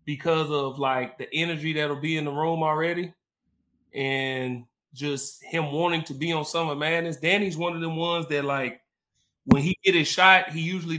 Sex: male